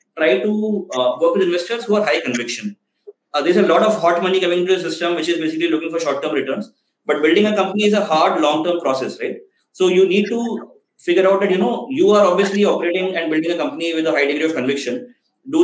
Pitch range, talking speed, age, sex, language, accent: 160-210 Hz, 240 wpm, 20-39, male, English, Indian